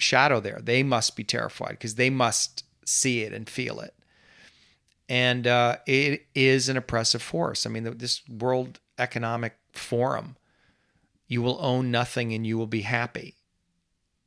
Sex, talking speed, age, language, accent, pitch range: male, 150 wpm, 40-59, English, American, 120-145 Hz